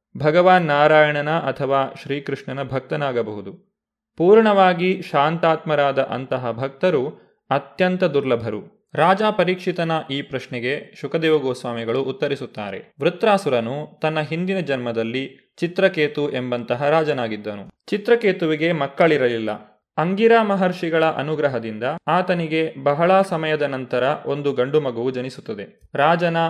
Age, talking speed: 30-49, 85 wpm